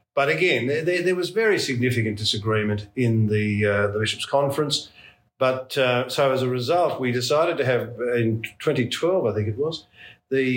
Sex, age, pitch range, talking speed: male, 50-69, 110-130 Hz, 180 wpm